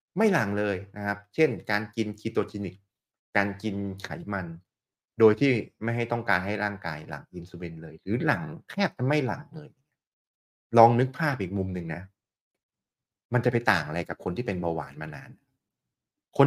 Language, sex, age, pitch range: Thai, male, 30-49, 95-135 Hz